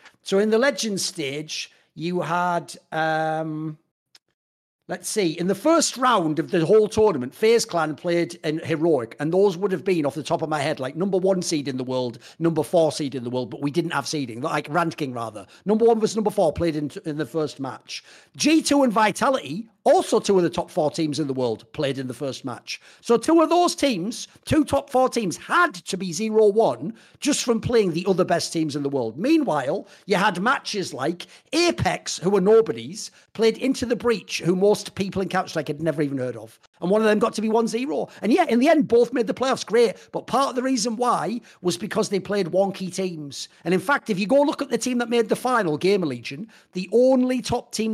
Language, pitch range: English, 160-240 Hz